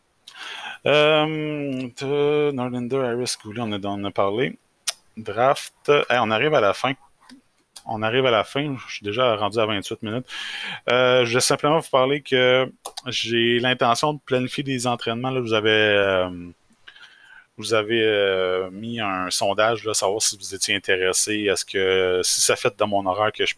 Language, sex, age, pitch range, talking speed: French, male, 20-39, 95-120 Hz, 165 wpm